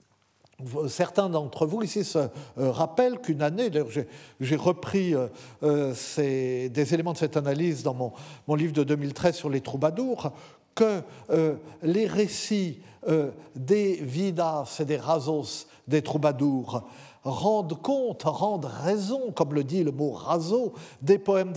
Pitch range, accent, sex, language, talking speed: 145-200 Hz, French, male, French, 140 wpm